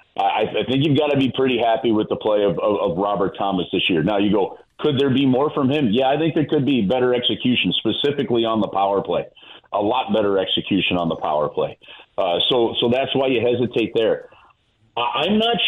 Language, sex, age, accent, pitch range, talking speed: English, male, 40-59, American, 110-150 Hz, 225 wpm